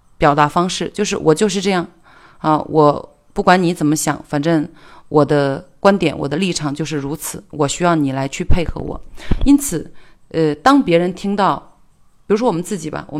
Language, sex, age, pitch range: Chinese, female, 30-49, 145-180 Hz